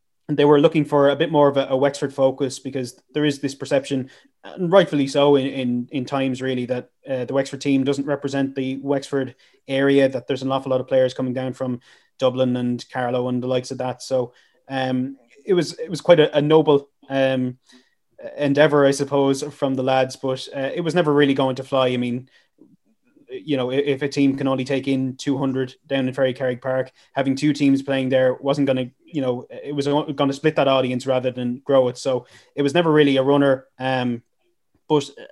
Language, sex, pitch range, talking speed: English, male, 130-145 Hz, 210 wpm